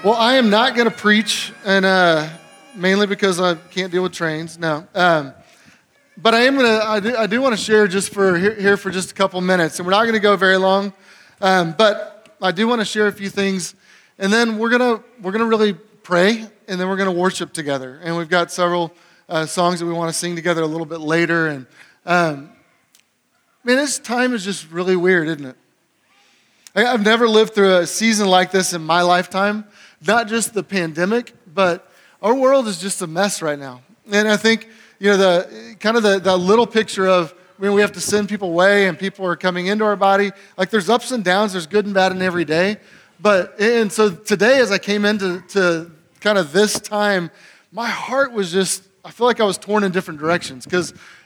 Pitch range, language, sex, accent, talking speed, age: 180-215 Hz, English, male, American, 230 wpm, 30-49